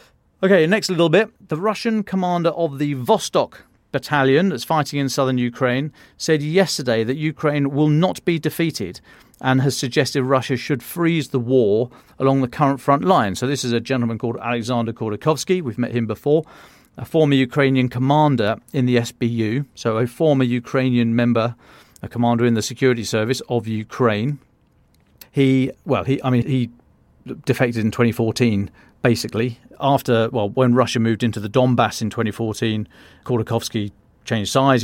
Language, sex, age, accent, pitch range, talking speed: English, male, 40-59, British, 115-140 Hz, 160 wpm